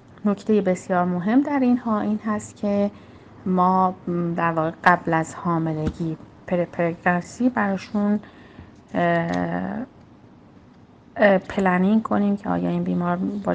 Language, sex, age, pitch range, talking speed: Persian, female, 30-49, 170-200 Hz, 105 wpm